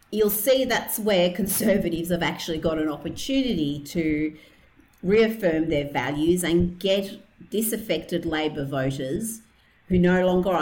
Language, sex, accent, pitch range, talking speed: English, female, Australian, 160-220 Hz, 125 wpm